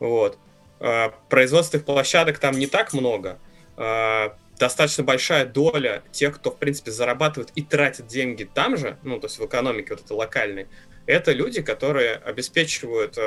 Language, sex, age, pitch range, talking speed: Russian, male, 20-39, 130-170 Hz, 145 wpm